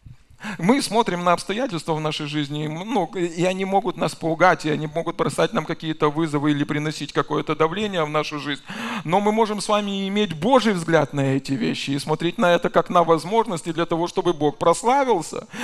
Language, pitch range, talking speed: Russian, 155-195 Hz, 190 wpm